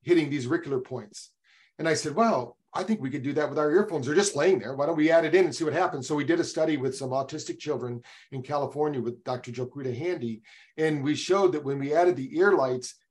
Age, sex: 40-59, male